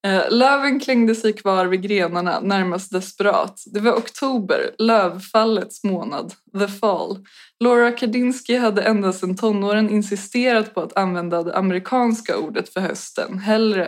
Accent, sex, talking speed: native, female, 135 wpm